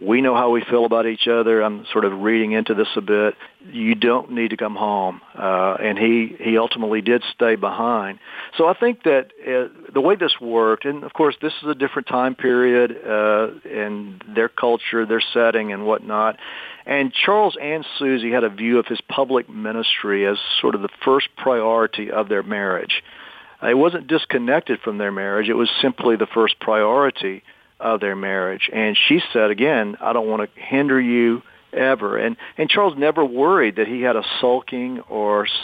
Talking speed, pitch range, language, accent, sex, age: 190 wpm, 110-130 Hz, English, American, male, 50-69